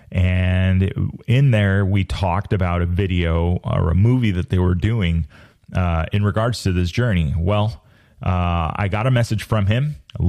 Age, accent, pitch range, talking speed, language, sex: 30-49, American, 90-110 Hz, 175 wpm, English, male